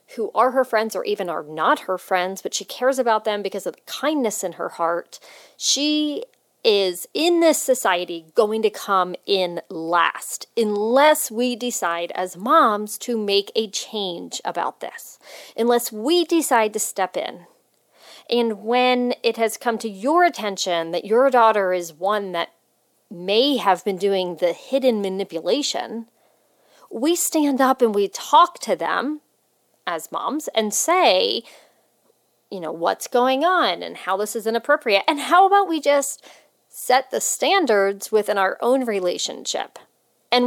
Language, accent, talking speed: English, American, 155 wpm